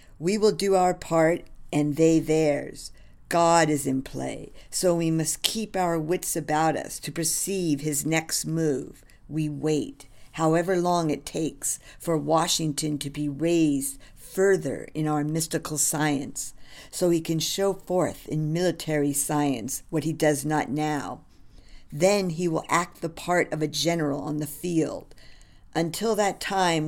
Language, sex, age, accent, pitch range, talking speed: English, female, 50-69, American, 145-175 Hz, 155 wpm